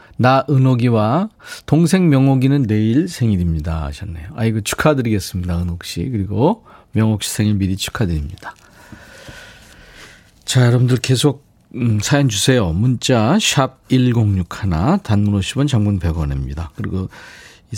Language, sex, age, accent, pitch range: Korean, male, 40-59, native, 95-140 Hz